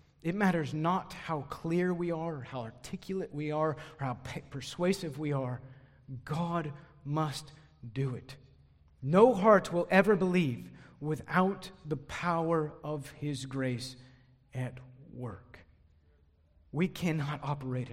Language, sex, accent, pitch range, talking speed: English, male, American, 95-155 Hz, 125 wpm